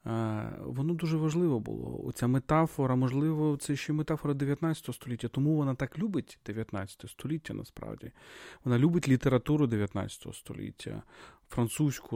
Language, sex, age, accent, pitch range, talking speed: Ukrainian, male, 40-59, native, 110-140 Hz, 130 wpm